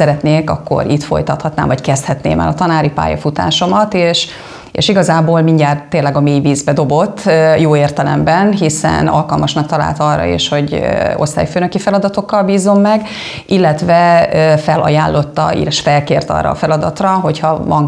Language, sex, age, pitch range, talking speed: Hungarian, female, 30-49, 145-175 Hz, 140 wpm